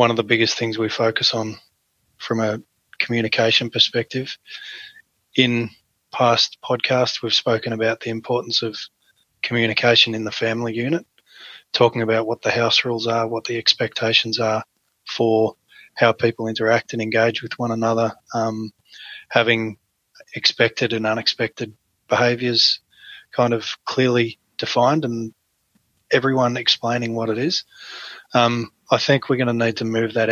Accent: Australian